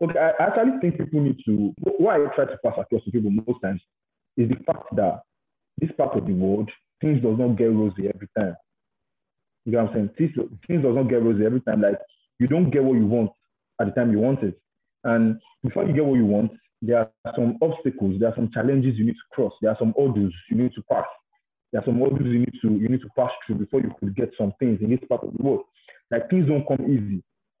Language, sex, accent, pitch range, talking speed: English, male, Nigerian, 110-140 Hz, 250 wpm